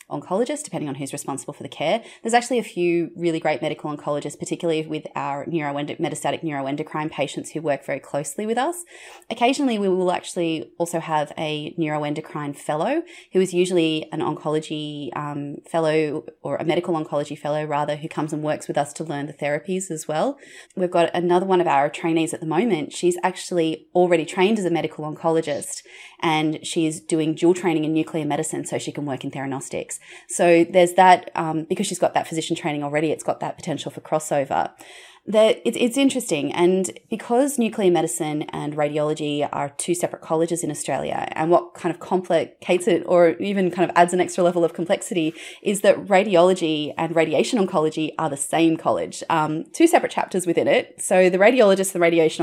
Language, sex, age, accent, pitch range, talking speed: English, female, 30-49, Australian, 155-180 Hz, 190 wpm